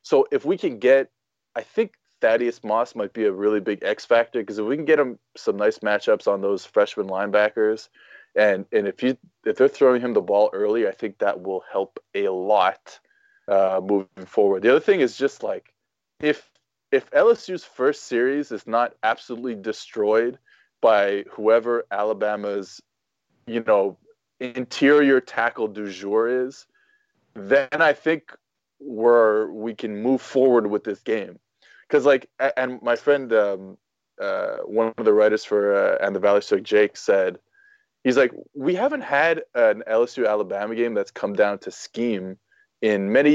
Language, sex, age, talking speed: English, male, 20-39, 170 wpm